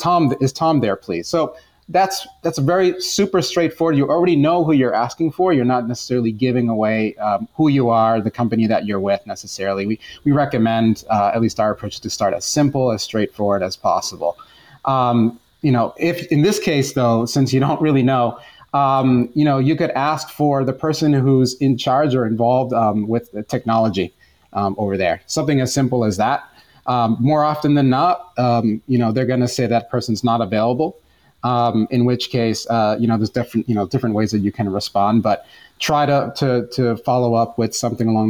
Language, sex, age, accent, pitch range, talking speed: English, male, 30-49, American, 115-145 Hz, 205 wpm